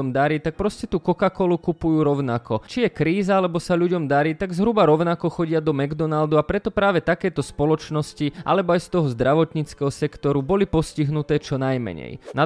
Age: 20-39